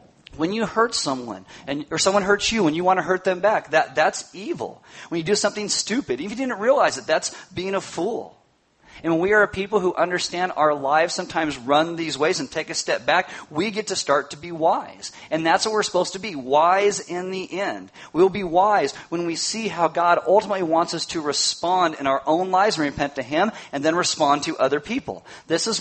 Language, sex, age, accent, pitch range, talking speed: English, male, 40-59, American, 160-205 Hz, 235 wpm